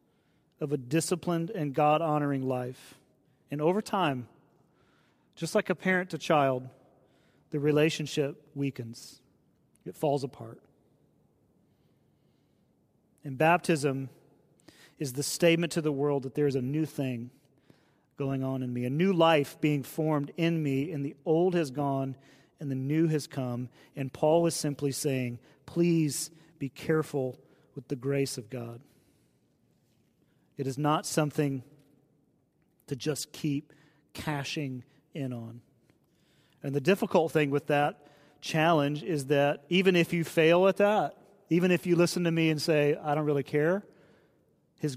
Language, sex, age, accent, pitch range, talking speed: English, male, 40-59, American, 135-160 Hz, 145 wpm